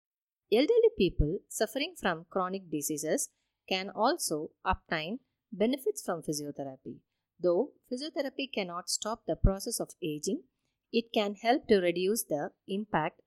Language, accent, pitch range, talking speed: English, Indian, 165-230 Hz, 120 wpm